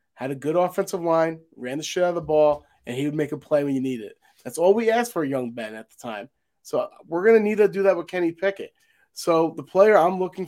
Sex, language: male, English